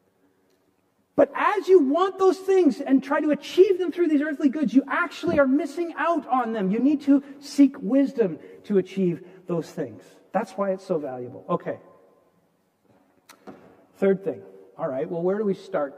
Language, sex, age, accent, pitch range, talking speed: English, male, 50-69, American, 155-235 Hz, 175 wpm